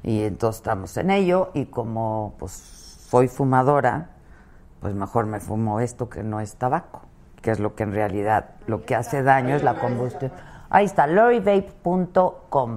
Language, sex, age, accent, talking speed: Spanish, female, 50-69, Mexican, 165 wpm